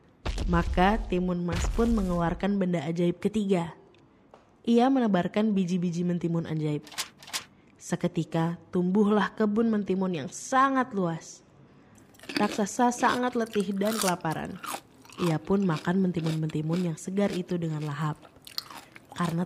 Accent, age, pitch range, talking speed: Indonesian, 20-39, 165-215 Hz, 110 wpm